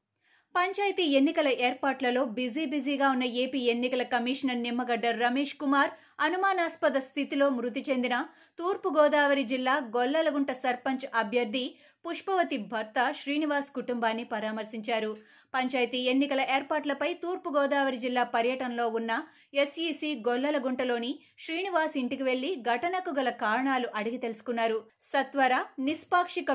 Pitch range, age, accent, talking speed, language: 240-290 Hz, 30-49, native, 100 wpm, Telugu